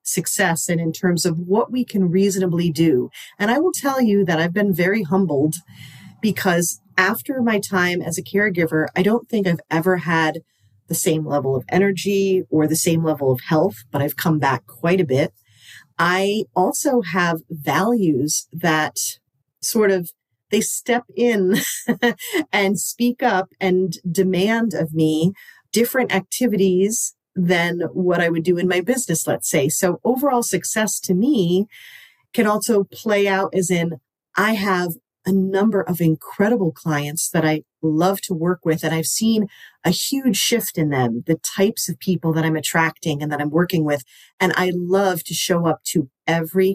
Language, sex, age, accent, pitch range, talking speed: English, female, 40-59, American, 160-200 Hz, 170 wpm